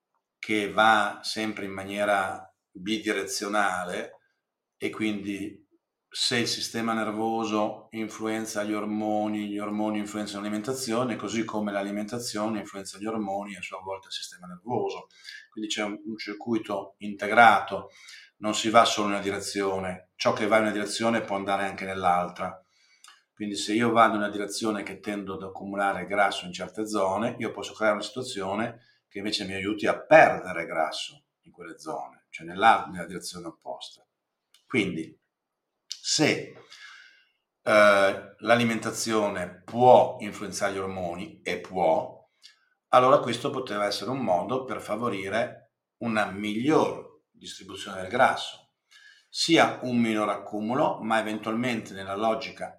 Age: 40-59